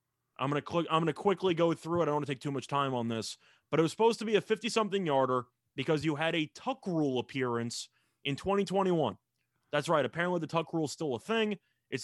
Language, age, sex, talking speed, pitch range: English, 30-49, male, 250 wpm, 135-185 Hz